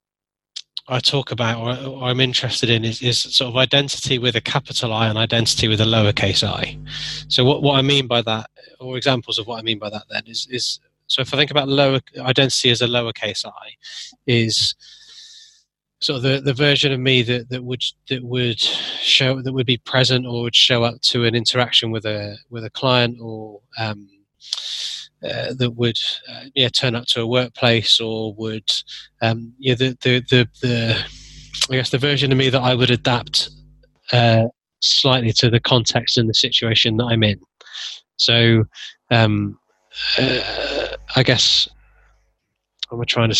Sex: male